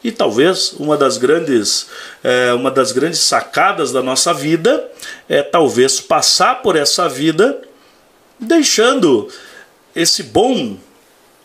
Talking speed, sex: 115 wpm, male